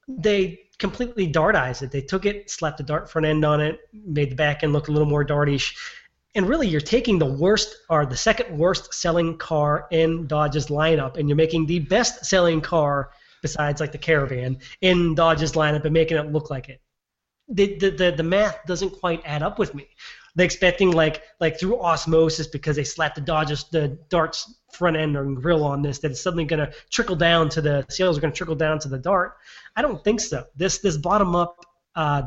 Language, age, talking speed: English, 30-49, 220 wpm